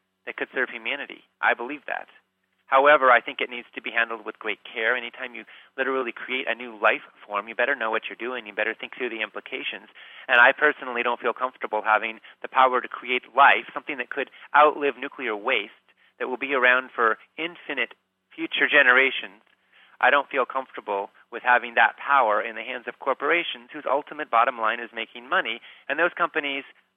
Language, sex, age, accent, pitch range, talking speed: English, male, 30-49, American, 105-130 Hz, 195 wpm